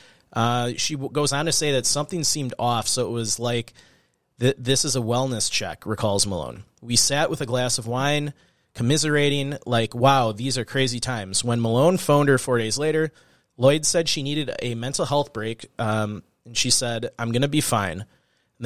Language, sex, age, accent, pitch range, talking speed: English, male, 30-49, American, 120-145 Hz, 195 wpm